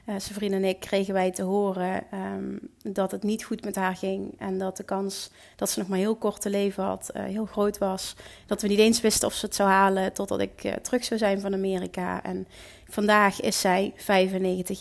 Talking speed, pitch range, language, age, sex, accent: 230 wpm, 190-215 Hz, Dutch, 30-49, female, Dutch